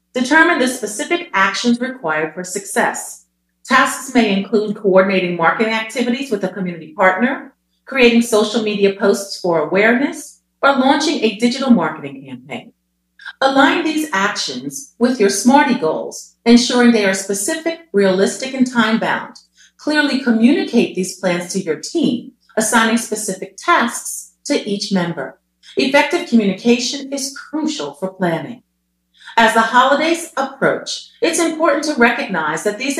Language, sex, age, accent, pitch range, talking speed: English, female, 40-59, American, 190-275 Hz, 130 wpm